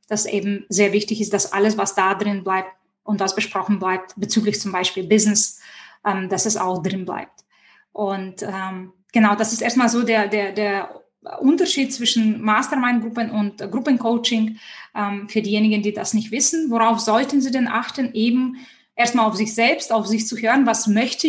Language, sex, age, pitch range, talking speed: German, female, 20-39, 210-250 Hz, 180 wpm